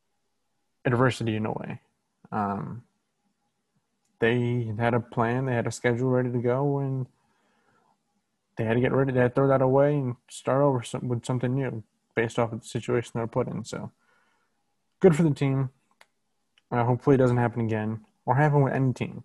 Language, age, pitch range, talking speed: English, 20-39, 115-135 Hz, 185 wpm